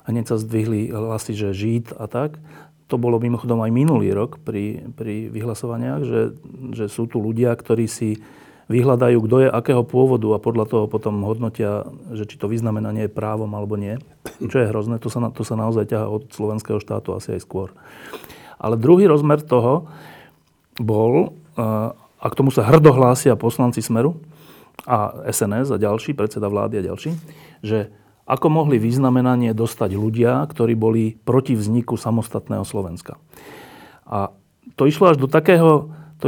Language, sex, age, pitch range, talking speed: Slovak, male, 40-59, 110-135 Hz, 160 wpm